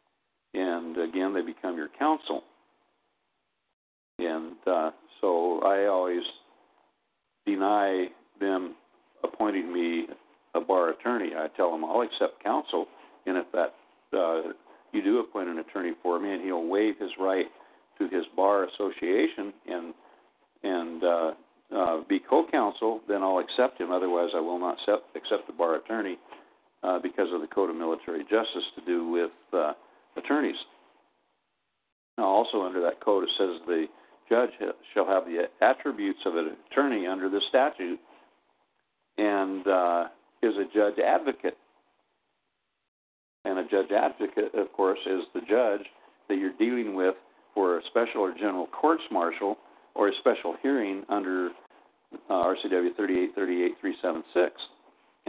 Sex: male